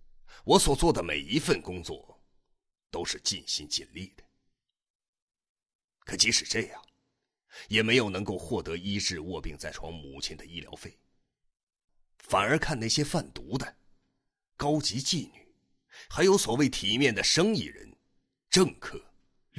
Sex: male